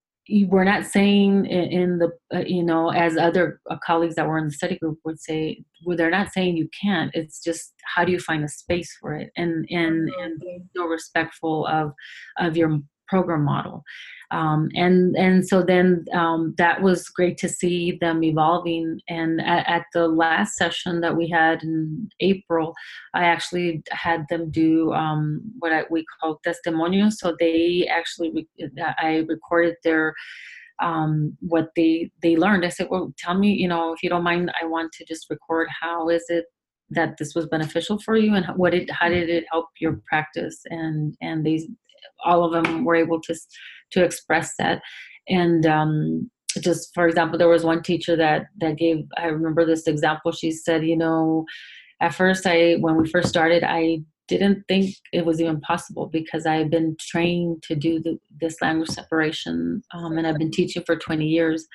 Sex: female